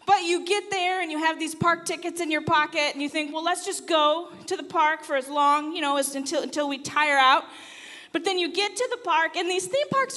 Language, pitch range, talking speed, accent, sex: English, 295-385 Hz, 265 wpm, American, female